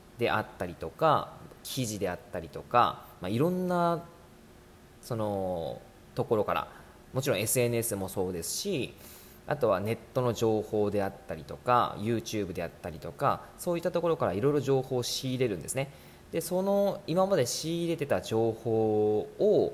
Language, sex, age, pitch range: Japanese, male, 20-39, 100-155 Hz